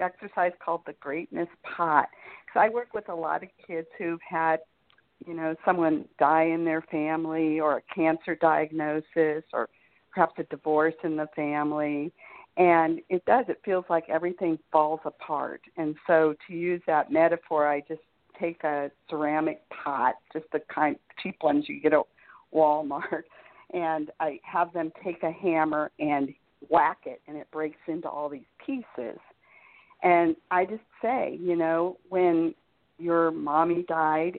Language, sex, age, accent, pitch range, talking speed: English, female, 50-69, American, 155-175 Hz, 160 wpm